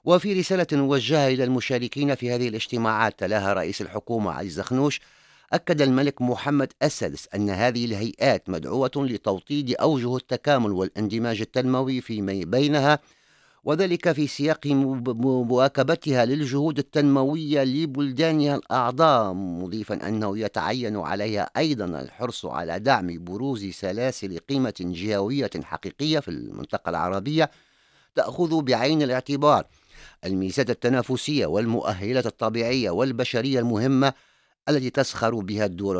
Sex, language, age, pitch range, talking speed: male, English, 50-69, 105-140 Hz, 110 wpm